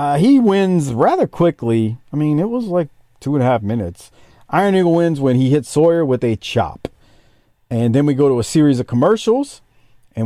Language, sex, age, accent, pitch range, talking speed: English, male, 40-59, American, 120-185 Hz, 205 wpm